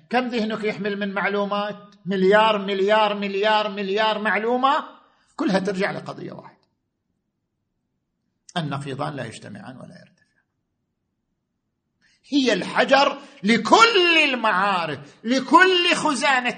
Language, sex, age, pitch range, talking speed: Arabic, male, 50-69, 195-260 Hz, 90 wpm